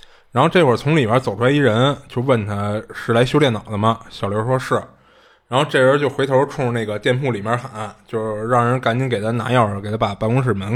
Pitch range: 105-130 Hz